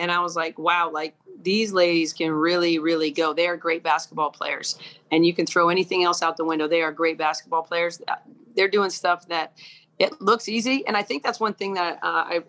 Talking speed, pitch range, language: 225 wpm, 165-180 Hz, English